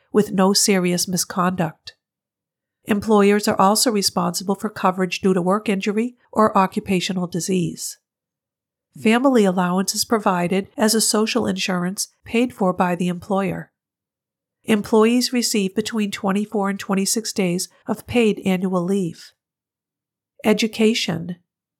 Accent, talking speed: American, 115 wpm